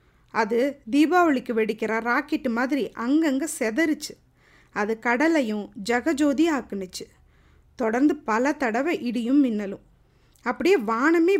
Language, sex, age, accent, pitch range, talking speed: Tamil, female, 20-39, native, 225-310 Hz, 95 wpm